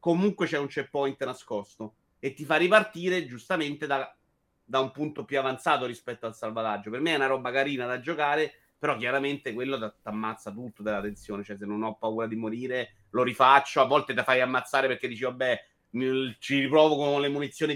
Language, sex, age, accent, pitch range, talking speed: Italian, male, 30-49, native, 125-165 Hz, 195 wpm